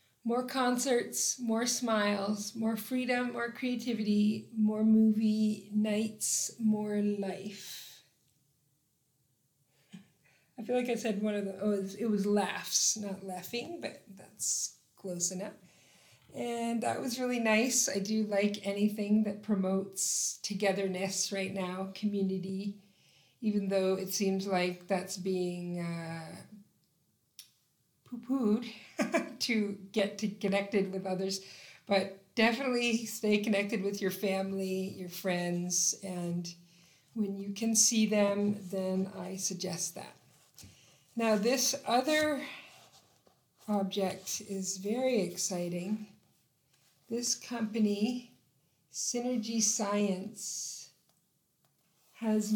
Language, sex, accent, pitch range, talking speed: English, female, American, 190-225 Hz, 105 wpm